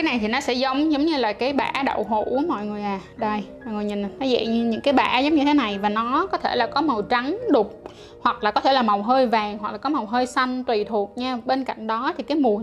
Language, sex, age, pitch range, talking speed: Vietnamese, female, 10-29, 210-275 Hz, 300 wpm